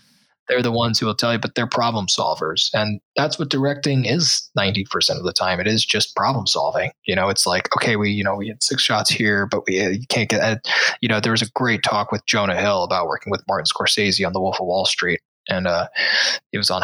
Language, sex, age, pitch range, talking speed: English, male, 20-39, 105-130 Hz, 240 wpm